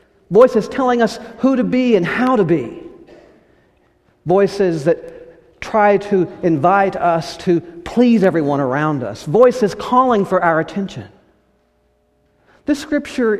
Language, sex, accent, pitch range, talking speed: English, male, American, 130-190 Hz, 125 wpm